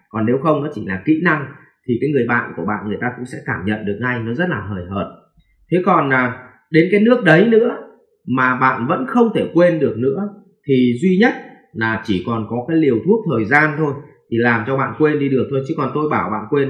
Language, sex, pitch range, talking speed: English, male, 125-170 Hz, 250 wpm